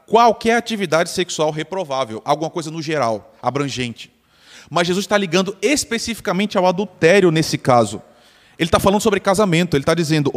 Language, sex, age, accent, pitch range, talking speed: Portuguese, male, 20-39, Brazilian, 130-185 Hz, 150 wpm